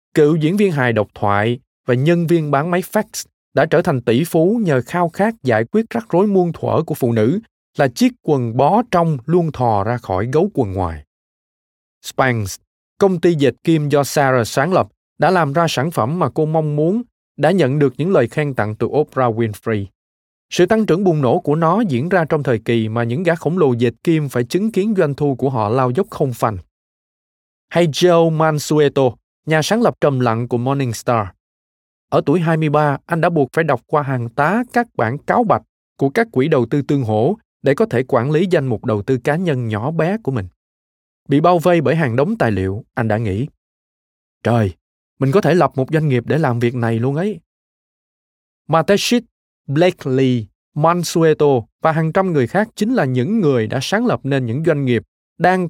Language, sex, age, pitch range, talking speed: Vietnamese, male, 20-39, 120-170 Hz, 205 wpm